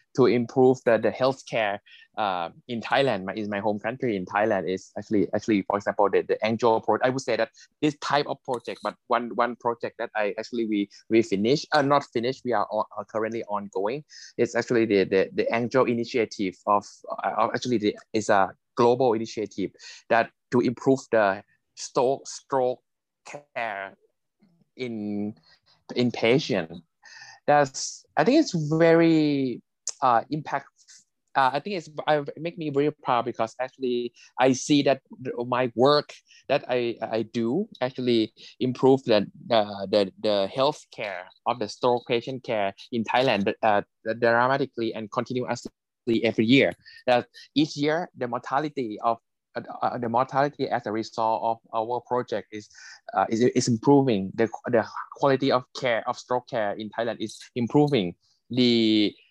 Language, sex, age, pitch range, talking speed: English, male, 20-39, 110-135 Hz, 160 wpm